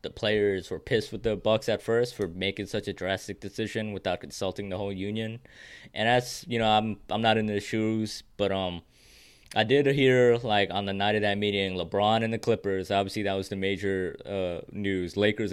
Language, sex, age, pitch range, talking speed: English, male, 20-39, 95-105 Hz, 210 wpm